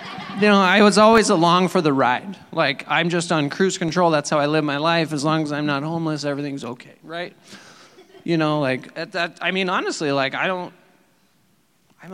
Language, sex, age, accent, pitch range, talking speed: English, male, 40-59, American, 140-180 Hz, 210 wpm